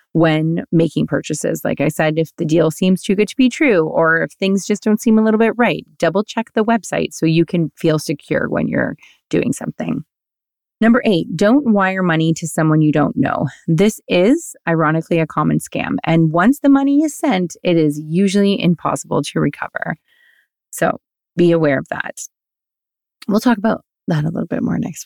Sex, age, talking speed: female, 30-49, 190 wpm